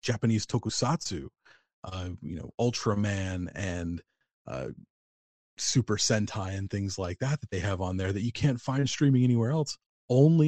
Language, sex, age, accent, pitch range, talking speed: English, male, 30-49, American, 95-120 Hz, 155 wpm